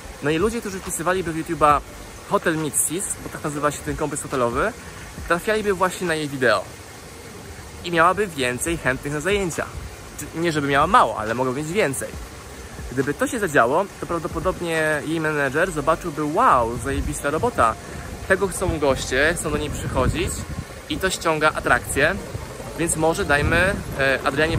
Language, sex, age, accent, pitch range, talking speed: Polish, male, 20-39, native, 130-170 Hz, 150 wpm